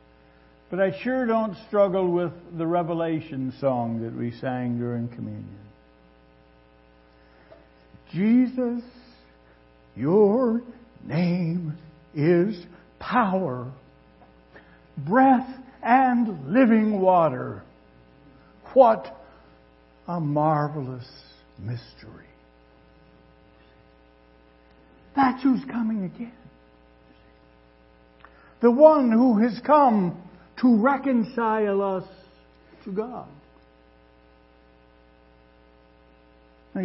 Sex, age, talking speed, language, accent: male, 60-79, 70 wpm, English, American